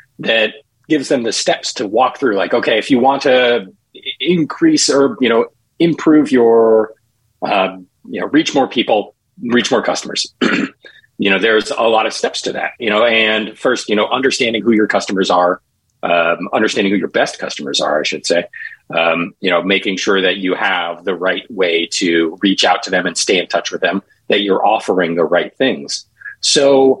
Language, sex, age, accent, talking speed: English, male, 40-59, American, 195 wpm